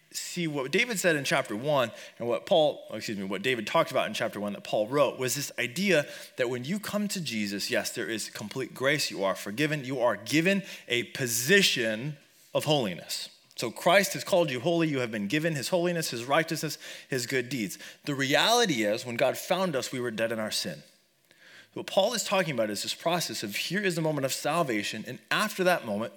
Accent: American